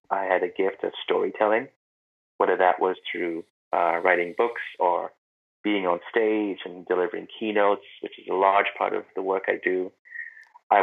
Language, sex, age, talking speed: English, male, 30-49, 170 wpm